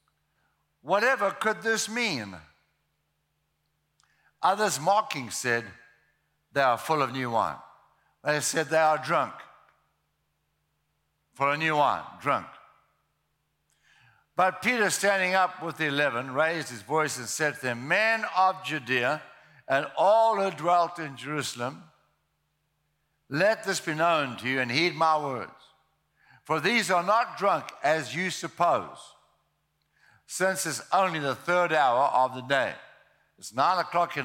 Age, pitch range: 60-79, 135-185 Hz